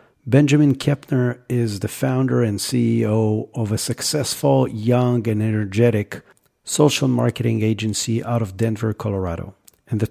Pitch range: 105-130 Hz